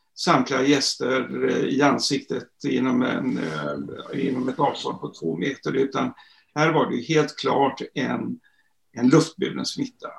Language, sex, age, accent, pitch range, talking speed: Swedish, male, 60-79, native, 135-180 Hz, 125 wpm